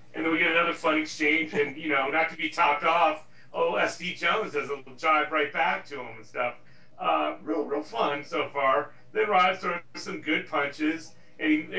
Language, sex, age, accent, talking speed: English, male, 40-59, American, 215 wpm